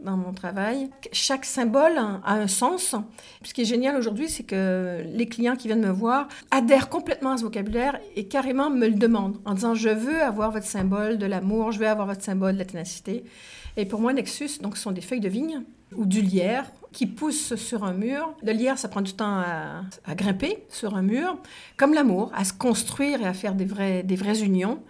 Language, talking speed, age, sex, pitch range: French, 220 wpm, 50-69, female, 195-250 Hz